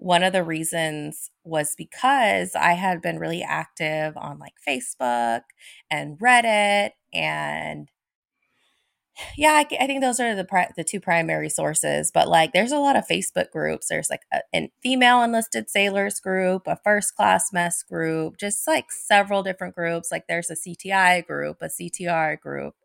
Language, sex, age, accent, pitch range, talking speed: English, female, 20-39, American, 150-190 Hz, 165 wpm